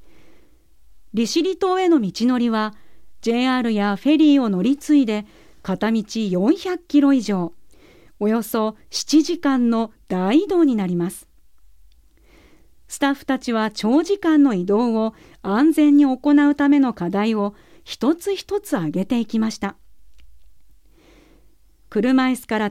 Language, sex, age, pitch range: Japanese, female, 40-59, 200-275 Hz